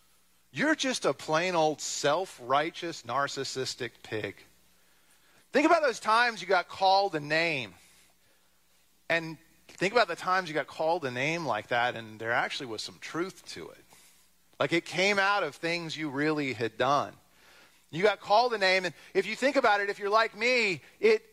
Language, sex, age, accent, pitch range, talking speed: English, male, 40-59, American, 130-195 Hz, 175 wpm